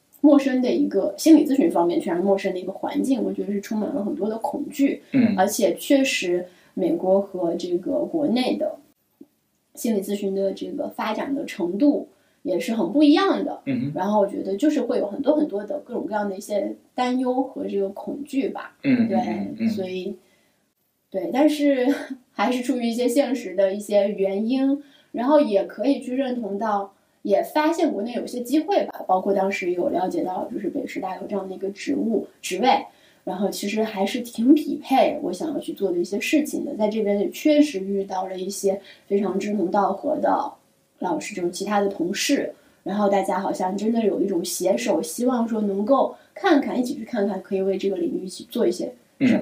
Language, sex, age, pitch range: Chinese, female, 20-39, 195-290 Hz